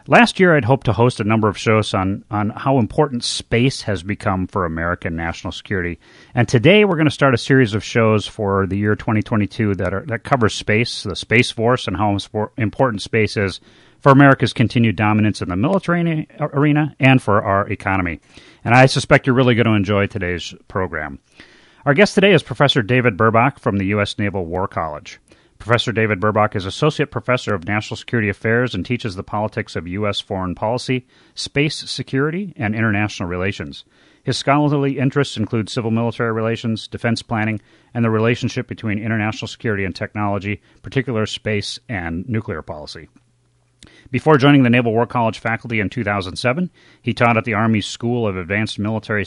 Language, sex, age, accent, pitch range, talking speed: English, male, 40-59, American, 100-125 Hz, 175 wpm